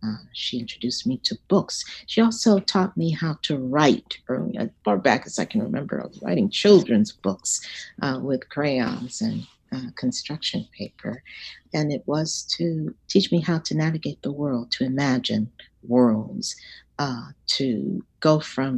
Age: 50-69